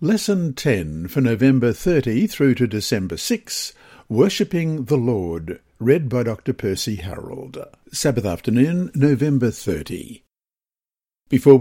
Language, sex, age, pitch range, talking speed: English, male, 60-79, 105-140 Hz, 115 wpm